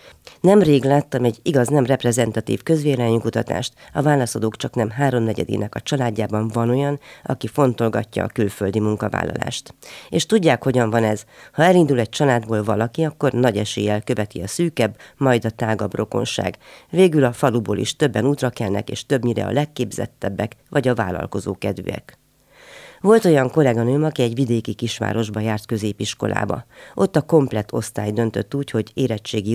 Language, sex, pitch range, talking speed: Hungarian, female, 110-140 Hz, 145 wpm